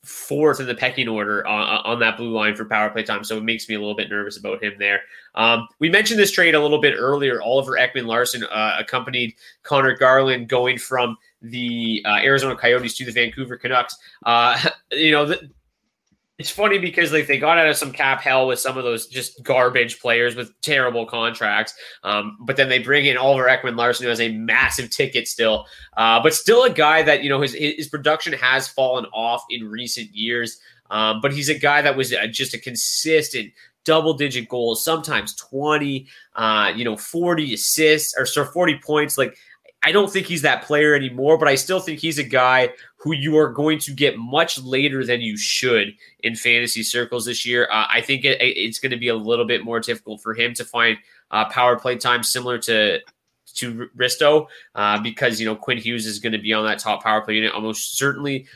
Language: English